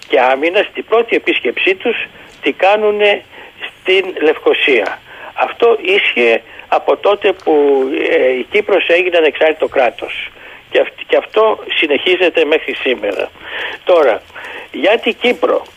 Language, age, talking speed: Greek, 60-79, 120 wpm